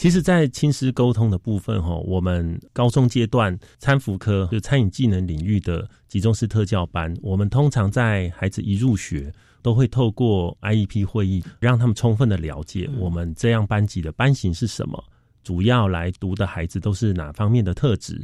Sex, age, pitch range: male, 30-49, 95-125 Hz